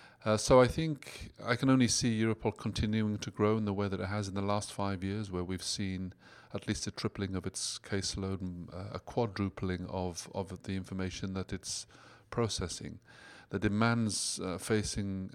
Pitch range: 90-110 Hz